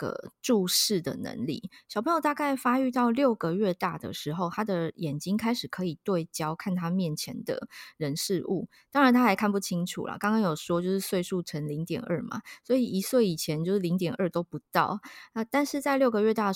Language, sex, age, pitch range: Chinese, female, 20-39, 160-210 Hz